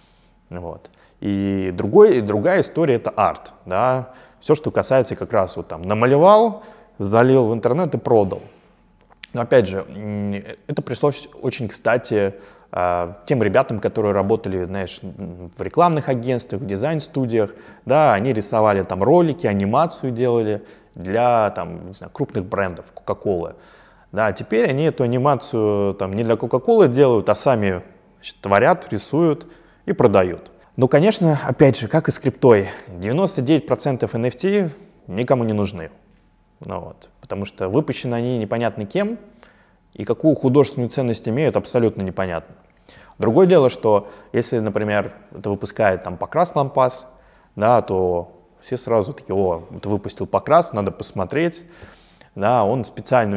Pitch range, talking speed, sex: 95-135 Hz, 135 wpm, male